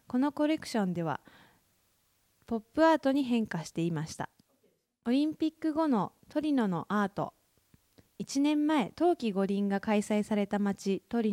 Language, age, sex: Japanese, 20-39, female